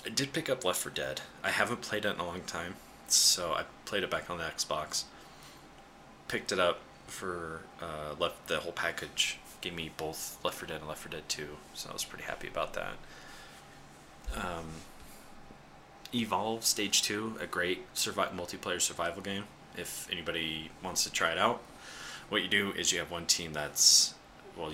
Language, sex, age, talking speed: English, male, 20-39, 185 wpm